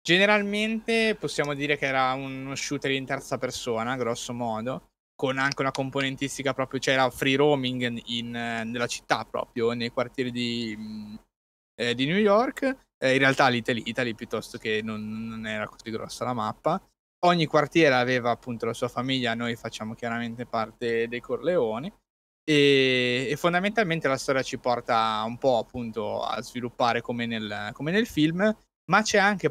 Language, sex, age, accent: Italian, male, 20-39, native